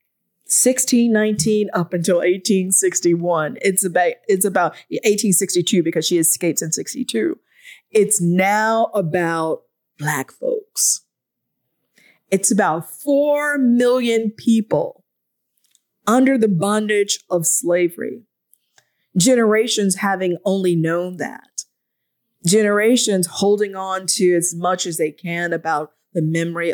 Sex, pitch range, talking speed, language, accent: female, 165-205 Hz, 105 wpm, English, American